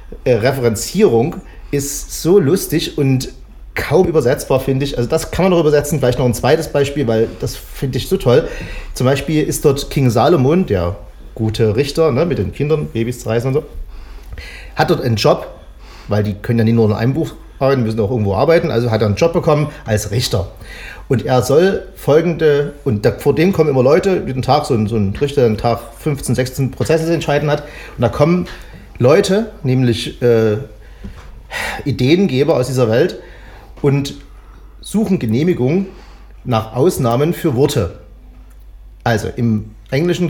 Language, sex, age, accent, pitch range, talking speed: German, male, 30-49, German, 105-150 Hz, 170 wpm